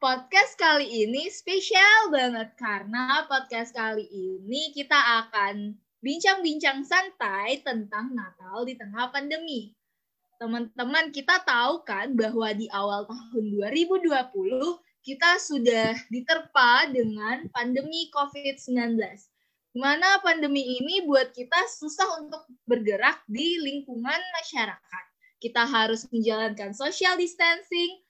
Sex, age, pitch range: female, 20-39, 230-315 Hz